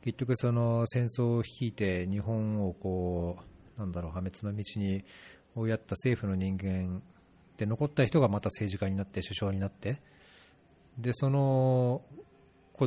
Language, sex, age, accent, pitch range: Japanese, male, 40-59, native, 100-140 Hz